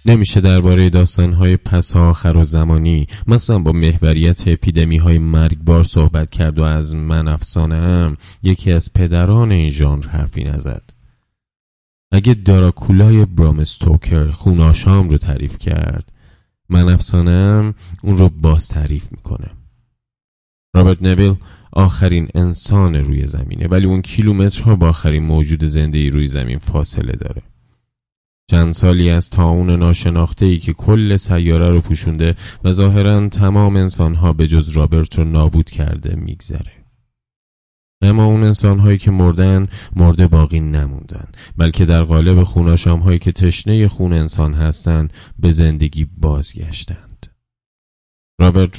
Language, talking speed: Persian, 120 wpm